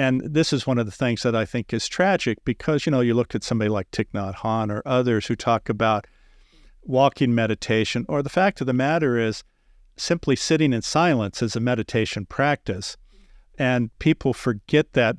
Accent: American